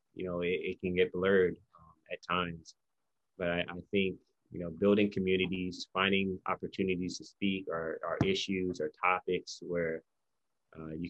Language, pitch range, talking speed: Filipino, 85-95 Hz, 160 wpm